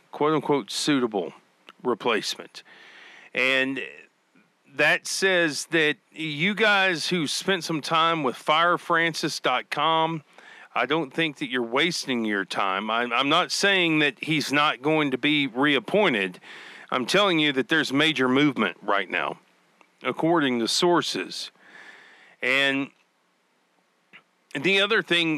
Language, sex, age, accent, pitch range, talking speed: English, male, 40-59, American, 135-175 Hz, 115 wpm